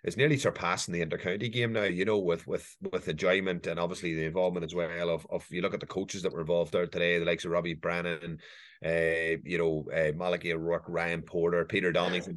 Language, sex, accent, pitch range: English, male, Irish, 85-95 Hz